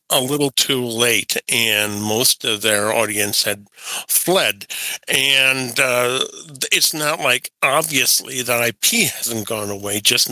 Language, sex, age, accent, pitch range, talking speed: English, male, 50-69, American, 110-140 Hz, 135 wpm